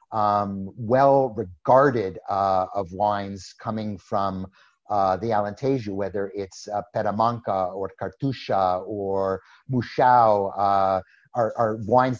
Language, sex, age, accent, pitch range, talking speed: English, male, 50-69, American, 110-135 Hz, 110 wpm